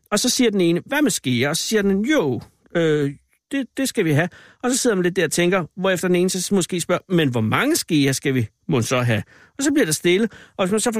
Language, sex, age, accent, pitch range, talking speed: Danish, male, 60-79, native, 145-225 Hz, 285 wpm